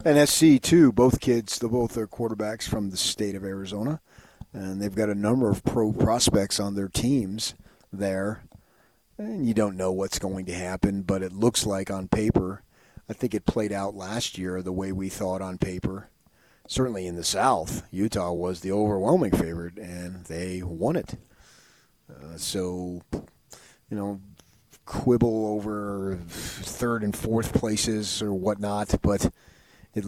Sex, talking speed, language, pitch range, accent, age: male, 160 wpm, English, 95-120 Hz, American, 40-59